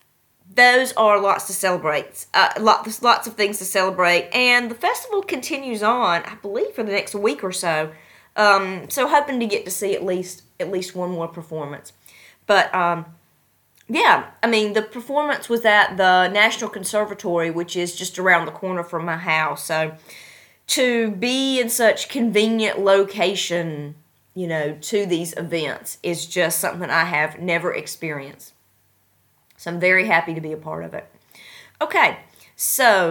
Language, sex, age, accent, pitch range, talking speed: English, female, 30-49, American, 170-225 Hz, 165 wpm